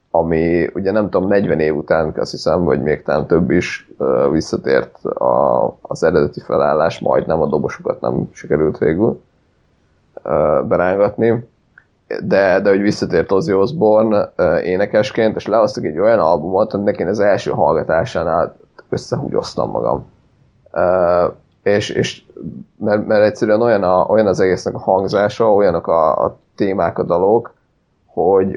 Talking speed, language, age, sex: 145 wpm, Hungarian, 30-49, male